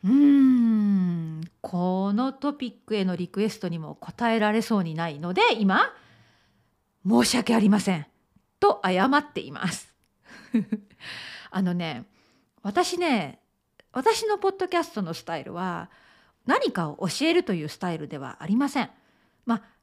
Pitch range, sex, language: 185-280 Hz, female, Japanese